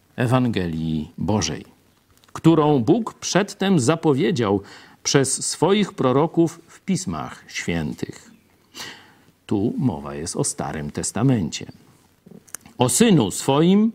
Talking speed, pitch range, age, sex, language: 90 wpm, 120-180 Hz, 50-69, male, Polish